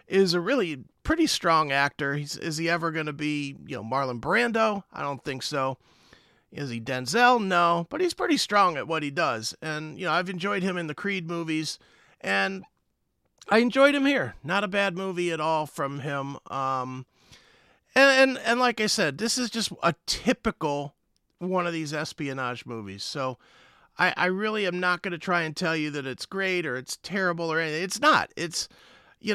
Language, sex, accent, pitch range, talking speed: English, male, American, 140-190 Hz, 195 wpm